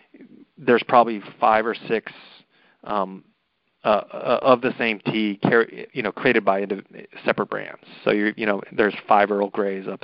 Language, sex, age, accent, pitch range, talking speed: English, male, 30-49, American, 100-110 Hz, 155 wpm